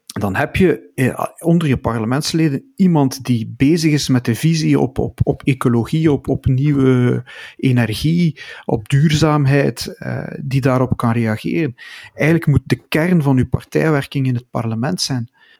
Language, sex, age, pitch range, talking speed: Dutch, male, 40-59, 120-145 Hz, 145 wpm